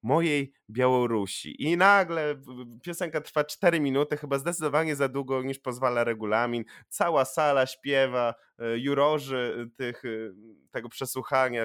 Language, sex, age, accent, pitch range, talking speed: Polish, male, 20-39, native, 115-165 Hz, 110 wpm